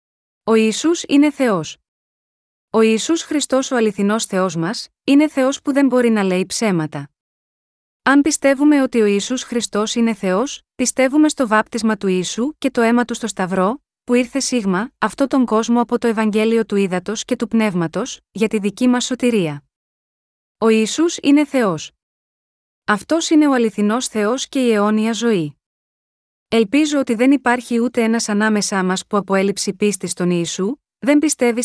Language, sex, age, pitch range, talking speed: Greek, female, 20-39, 200-250 Hz, 160 wpm